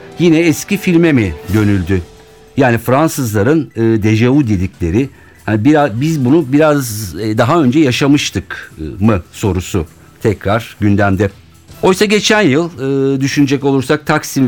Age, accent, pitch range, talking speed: 60-79, native, 95-140 Hz, 105 wpm